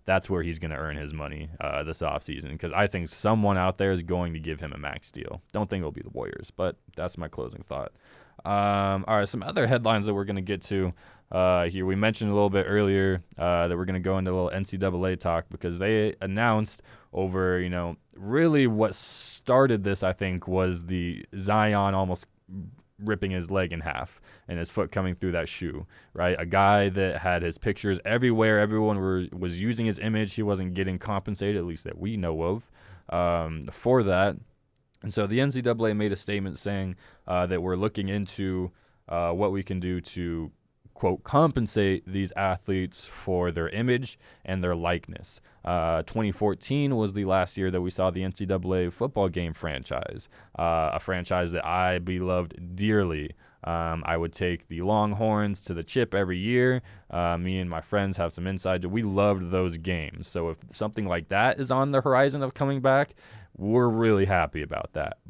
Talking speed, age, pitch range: 195 wpm, 20-39, 90-105 Hz